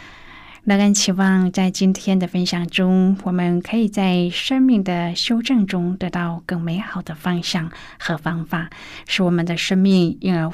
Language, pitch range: Chinese, 170-195 Hz